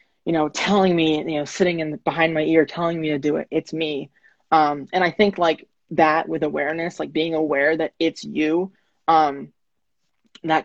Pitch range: 150-175 Hz